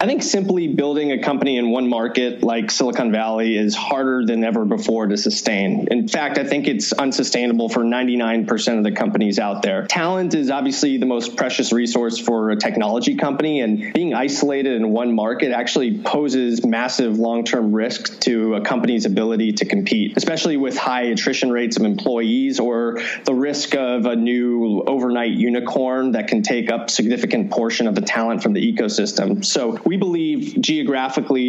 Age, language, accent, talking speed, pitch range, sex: 30-49, English, American, 175 wpm, 115-145 Hz, male